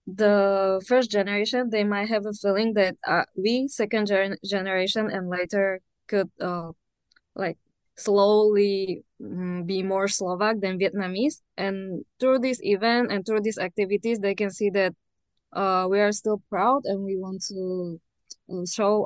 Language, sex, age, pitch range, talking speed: Slovak, female, 20-39, 180-210 Hz, 150 wpm